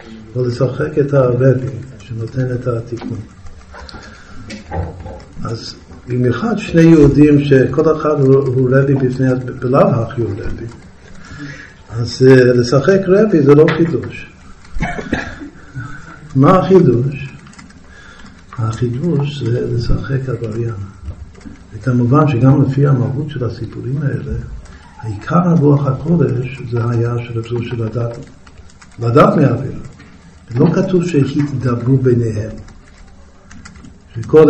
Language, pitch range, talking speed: Hebrew, 115-150 Hz, 95 wpm